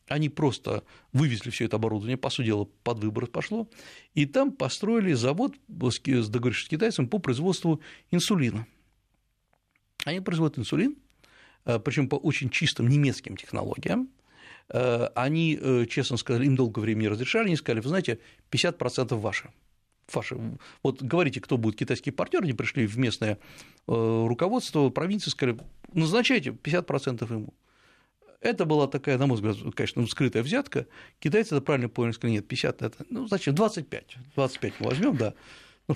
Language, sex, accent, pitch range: Russian, male, native, 120-160 Hz